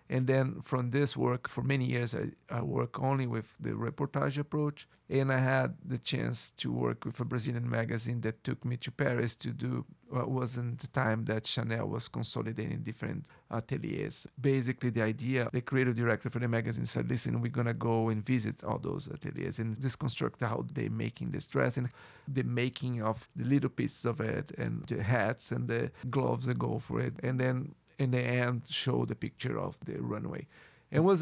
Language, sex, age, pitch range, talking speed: English, male, 40-59, 115-135 Hz, 200 wpm